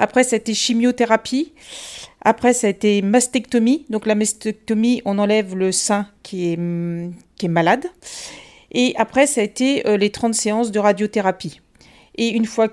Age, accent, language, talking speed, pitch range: 40-59, French, French, 160 wpm, 205-245 Hz